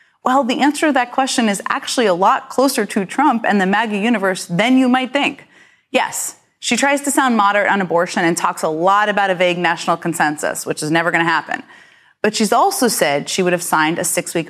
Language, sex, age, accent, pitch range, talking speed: English, female, 30-49, American, 185-250 Hz, 225 wpm